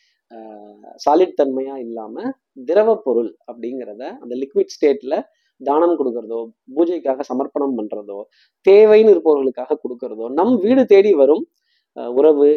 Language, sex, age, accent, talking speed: Tamil, male, 30-49, native, 105 wpm